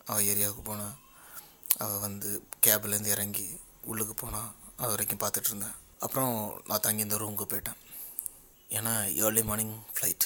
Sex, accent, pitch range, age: male, native, 105-115 Hz, 20-39